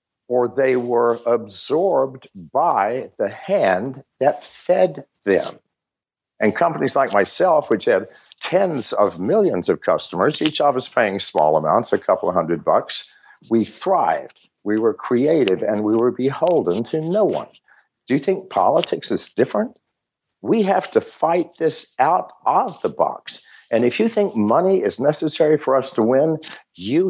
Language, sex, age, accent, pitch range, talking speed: English, male, 50-69, American, 135-175 Hz, 155 wpm